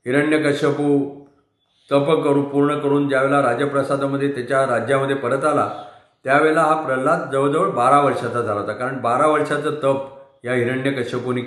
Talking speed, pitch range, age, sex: 130 wpm, 125-150 Hz, 40-59, male